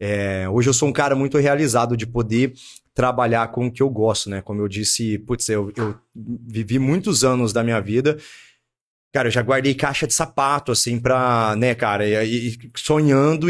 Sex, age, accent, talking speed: male, 20-39, Brazilian, 185 wpm